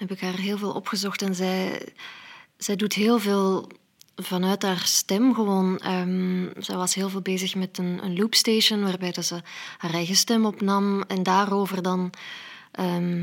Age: 20-39